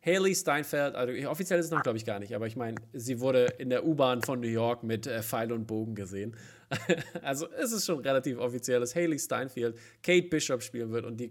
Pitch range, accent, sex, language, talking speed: 120-150 Hz, German, male, German, 230 wpm